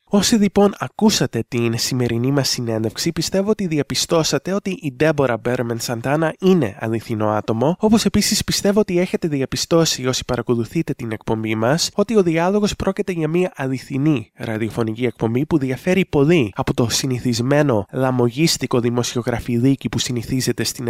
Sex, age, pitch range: male, 20-39, 120-165 Hz